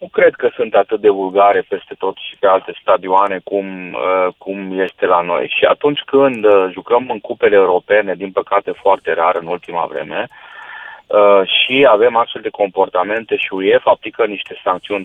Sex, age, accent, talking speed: male, 30-49, native, 180 wpm